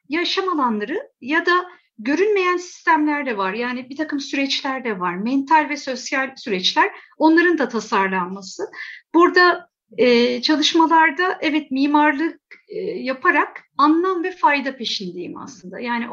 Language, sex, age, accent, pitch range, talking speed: Turkish, female, 50-69, native, 245-340 Hz, 125 wpm